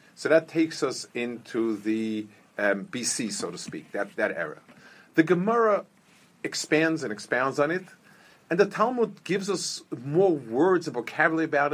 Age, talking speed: 50-69, 160 wpm